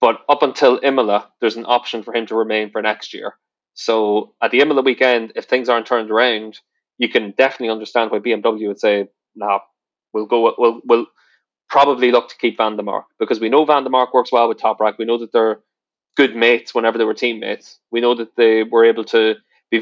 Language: English